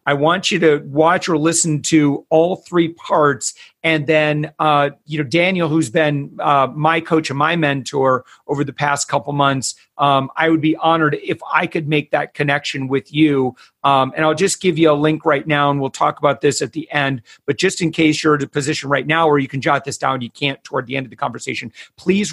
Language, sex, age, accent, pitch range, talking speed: English, male, 40-59, American, 140-160 Hz, 230 wpm